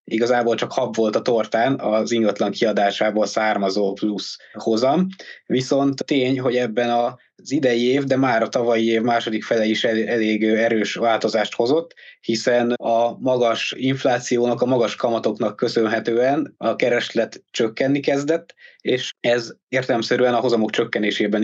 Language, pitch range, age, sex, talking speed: Hungarian, 115-135 Hz, 20-39, male, 135 wpm